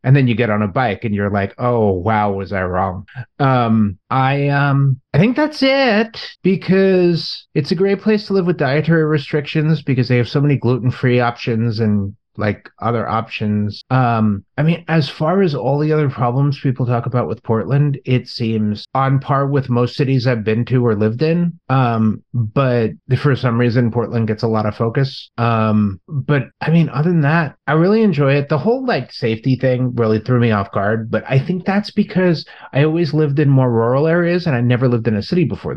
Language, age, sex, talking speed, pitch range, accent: English, 30-49, male, 205 wpm, 110-145 Hz, American